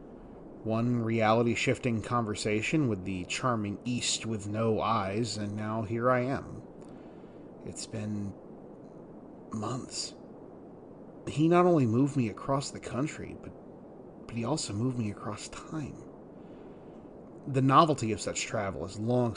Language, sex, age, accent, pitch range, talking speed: English, male, 30-49, American, 100-120 Hz, 125 wpm